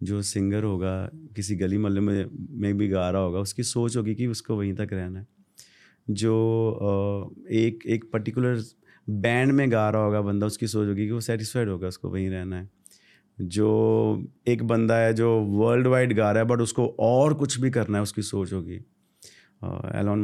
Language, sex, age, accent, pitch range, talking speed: Hindi, male, 30-49, native, 100-120 Hz, 185 wpm